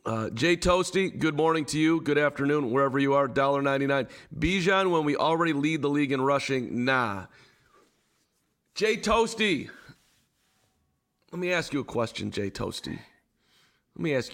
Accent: American